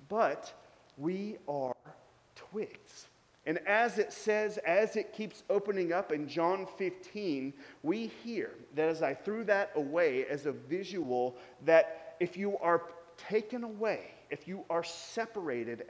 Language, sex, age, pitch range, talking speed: English, male, 30-49, 155-210 Hz, 140 wpm